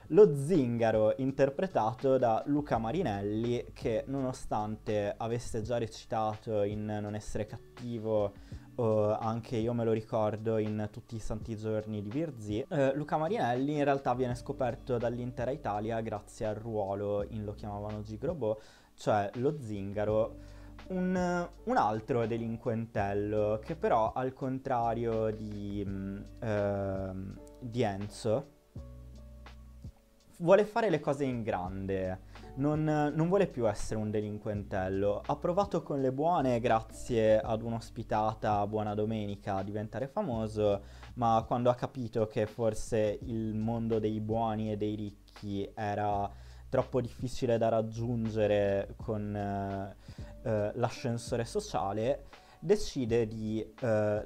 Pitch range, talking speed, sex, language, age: 105-125 Hz, 125 wpm, male, Italian, 20-39